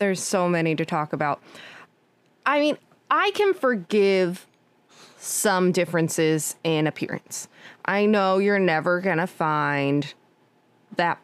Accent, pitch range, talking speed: American, 165-205 Hz, 125 wpm